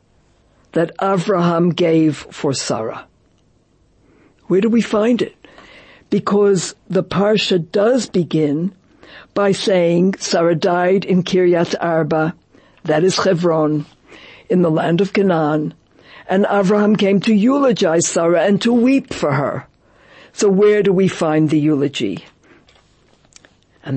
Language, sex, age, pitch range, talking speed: English, female, 60-79, 155-200 Hz, 125 wpm